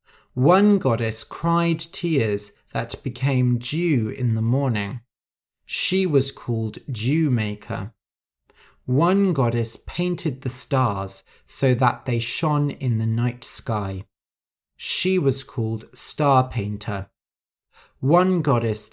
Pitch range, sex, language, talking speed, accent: 115-150 Hz, male, English, 110 wpm, British